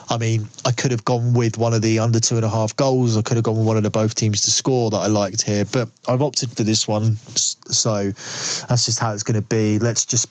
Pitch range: 110-130 Hz